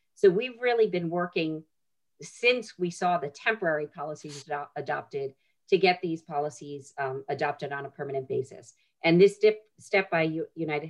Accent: American